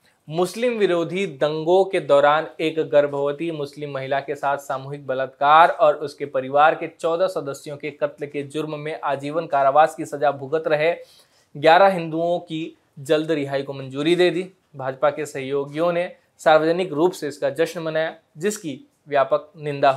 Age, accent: 20-39, native